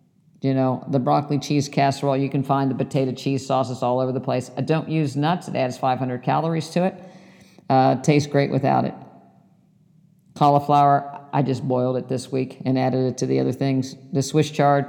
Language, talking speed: English, 200 wpm